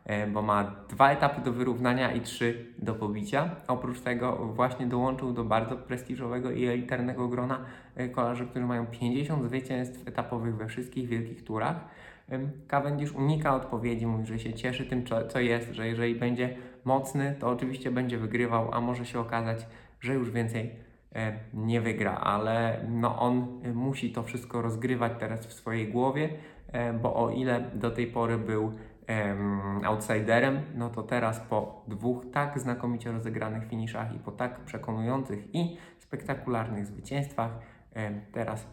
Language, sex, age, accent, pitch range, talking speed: Polish, male, 20-39, native, 115-130 Hz, 145 wpm